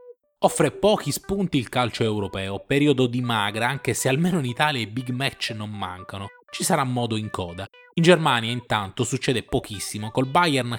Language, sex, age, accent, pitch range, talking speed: Italian, male, 20-39, native, 115-175 Hz, 170 wpm